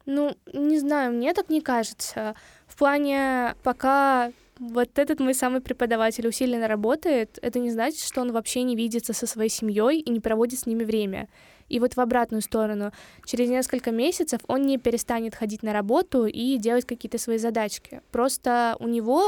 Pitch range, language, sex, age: 230-260 Hz, Russian, female, 10-29